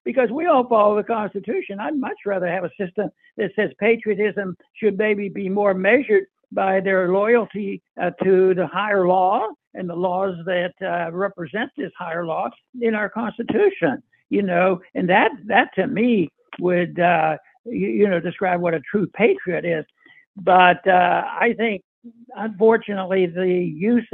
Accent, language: American, English